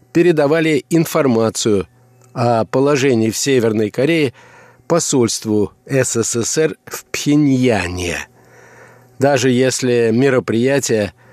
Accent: native